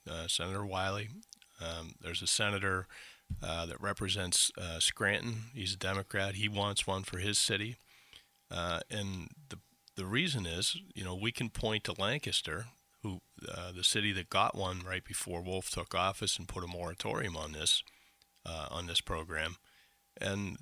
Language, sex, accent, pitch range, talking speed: English, male, American, 90-105 Hz, 165 wpm